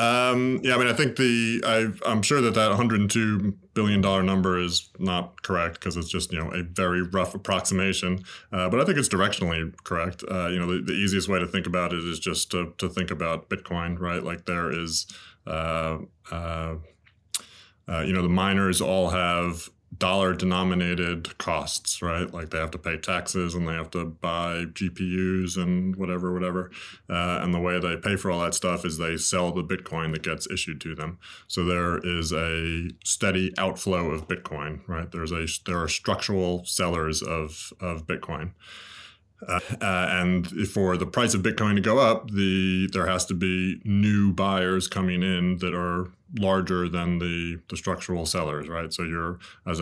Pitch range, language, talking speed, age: 85-95 Hz, English, 185 wpm, 20-39